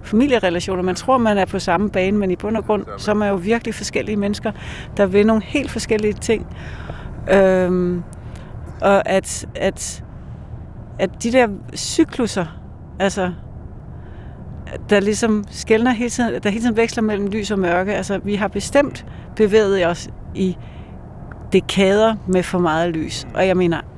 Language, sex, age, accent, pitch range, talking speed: Danish, female, 60-79, native, 175-220 Hz, 160 wpm